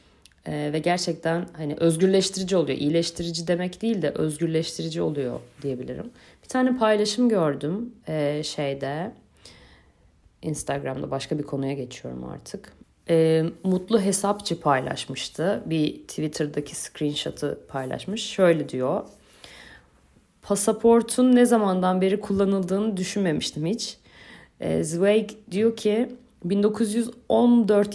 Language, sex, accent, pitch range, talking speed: Turkish, female, native, 145-205 Hz, 100 wpm